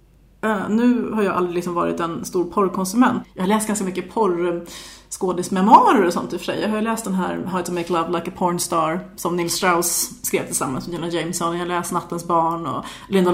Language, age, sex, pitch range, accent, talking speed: Swedish, 30-49, female, 175-210 Hz, native, 215 wpm